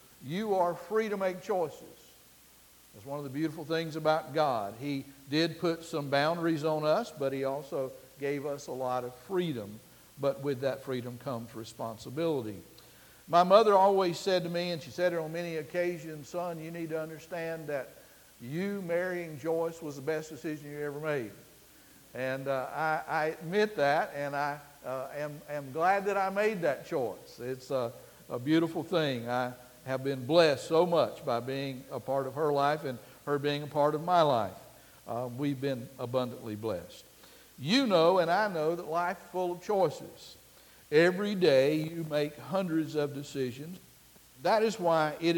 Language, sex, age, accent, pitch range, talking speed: English, male, 60-79, American, 135-170 Hz, 180 wpm